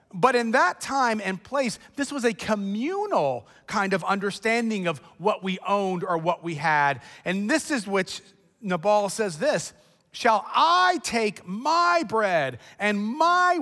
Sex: male